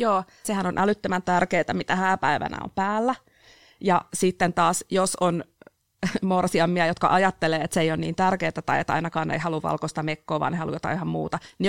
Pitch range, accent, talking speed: 165-190 Hz, native, 190 wpm